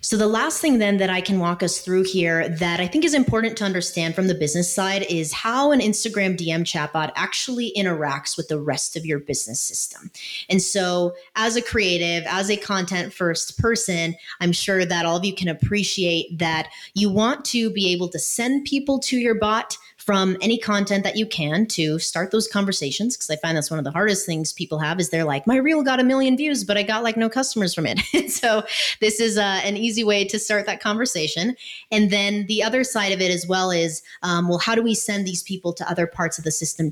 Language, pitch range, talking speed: English, 170-215 Hz, 230 wpm